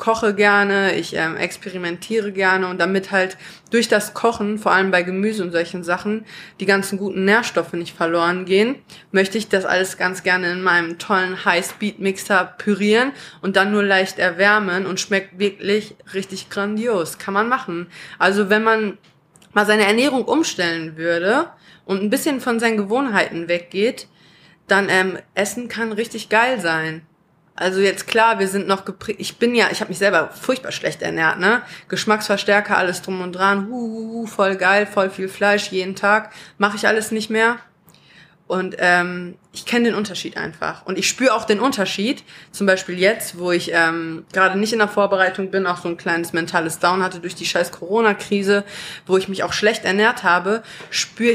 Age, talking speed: 20-39, 175 wpm